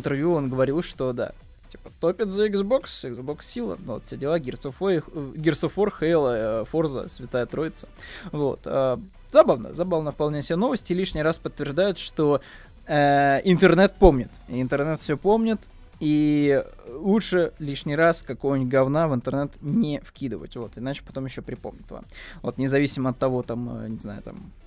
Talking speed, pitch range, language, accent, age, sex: 150 wpm, 135-195 Hz, Russian, native, 20-39, male